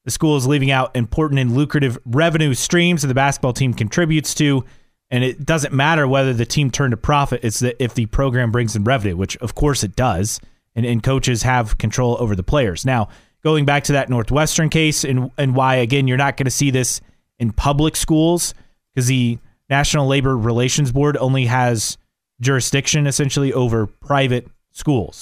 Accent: American